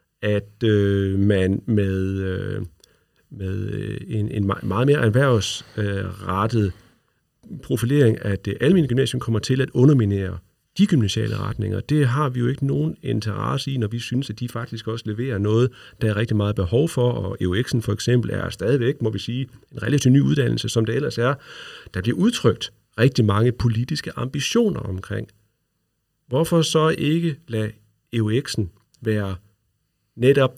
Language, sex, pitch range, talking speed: Danish, male, 105-135 Hz, 155 wpm